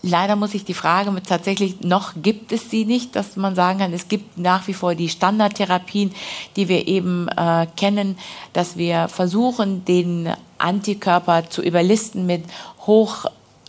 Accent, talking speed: German, 160 wpm